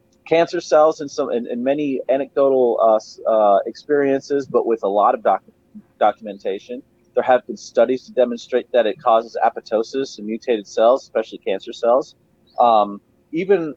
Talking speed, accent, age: 155 wpm, American, 30-49